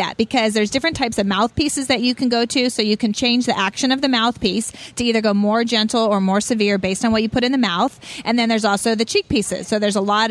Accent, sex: American, female